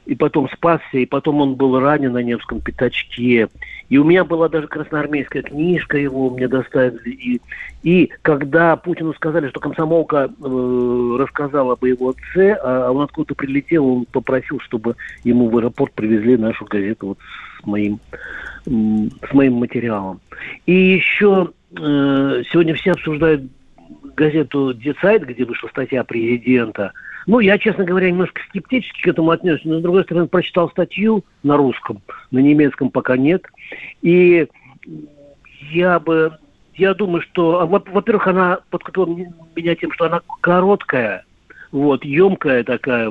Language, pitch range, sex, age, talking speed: Russian, 130-170 Hz, male, 50-69, 145 wpm